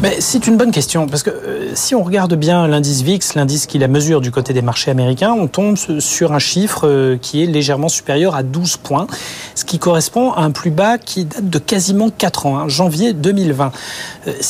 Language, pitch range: French, 135-170 Hz